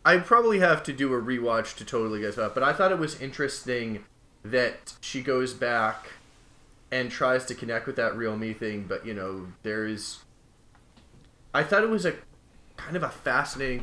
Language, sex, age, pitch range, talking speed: English, male, 20-39, 110-145 Hz, 190 wpm